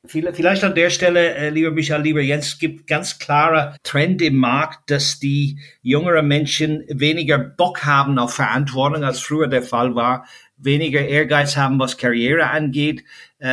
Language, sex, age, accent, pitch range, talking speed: German, male, 50-69, German, 130-155 Hz, 150 wpm